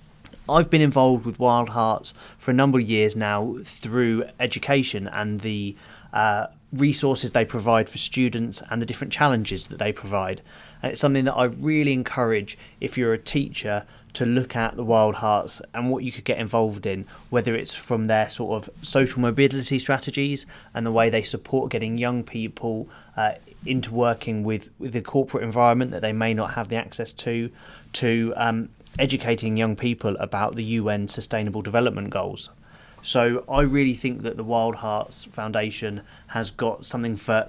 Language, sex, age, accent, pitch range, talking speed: English, male, 20-39, British, 110-125 Hz, 175 wpm